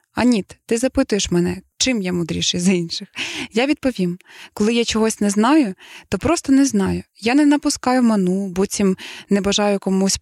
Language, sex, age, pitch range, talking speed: Ukrainian, female, 20-39, 185-235 Hz, 165 wpm